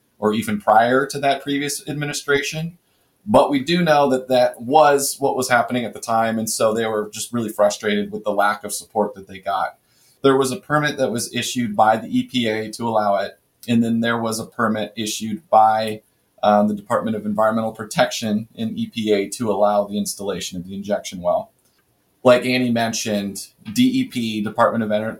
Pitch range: 105-135 Hz